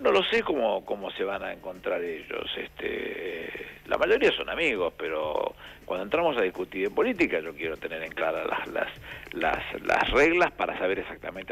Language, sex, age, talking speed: Spanish, male, 60-79, 180 wpm